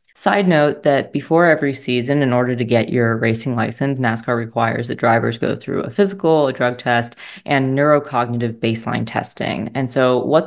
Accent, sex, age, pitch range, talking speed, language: American, female, 20-39, 120-145 Hz, 180 wpm, English